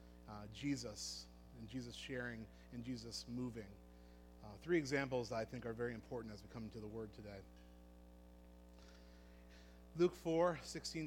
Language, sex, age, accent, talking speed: English, male, 40-59, American, 145 wpm